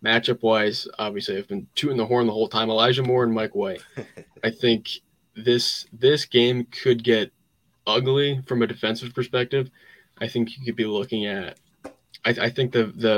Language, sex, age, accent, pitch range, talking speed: English, male, 20-39, American, 115-125 Hz, 180 wpm